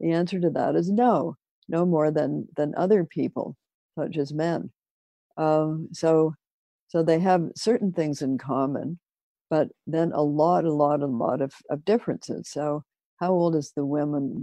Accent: American